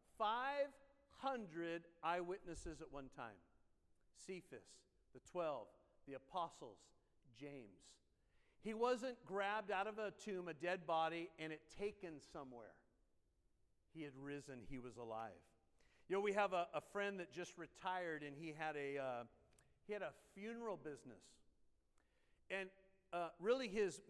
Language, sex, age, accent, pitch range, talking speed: English, male, 50-69, American, 155-200 Hz, 135 wpm